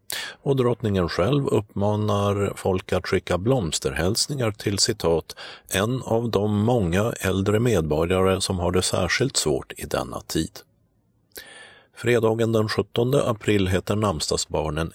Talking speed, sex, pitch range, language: 120 wpm, male, 85-110 Hz, Swedish